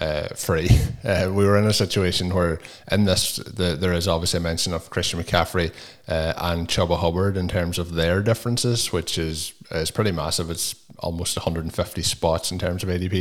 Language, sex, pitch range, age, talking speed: English, male, 85-100 Hz, 20-39, 190 wpm